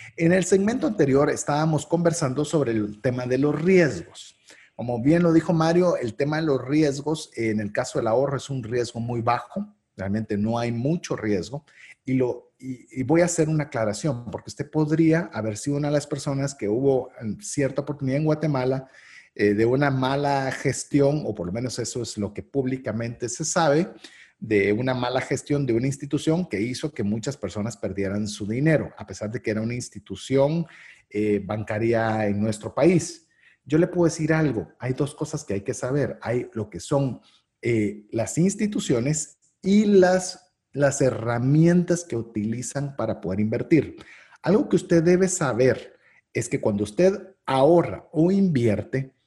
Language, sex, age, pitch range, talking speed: Spanish, male, 40-59, 115-160 Hz, 175 wpm